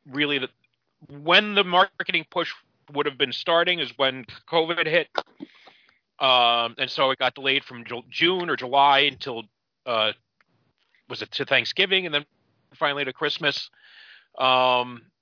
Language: English